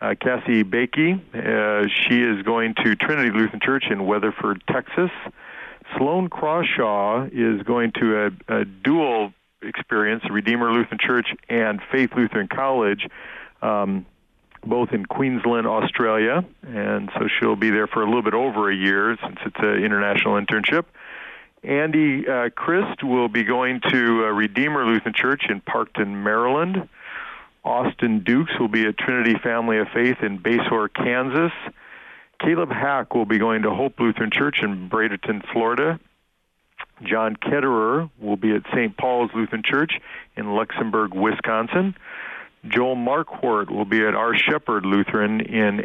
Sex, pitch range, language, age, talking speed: male, 105-125 Hz, English, 50-69, 145 wpm